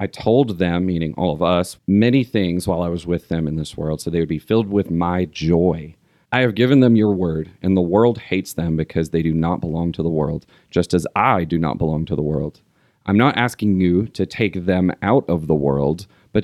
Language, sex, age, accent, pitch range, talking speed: English, male, 40-59, American, 85-105 Hz, 235 wpm